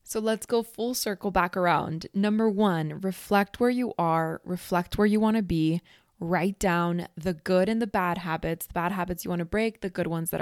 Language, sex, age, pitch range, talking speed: English, female, 20-39, 170-205 Hz, 220 wpm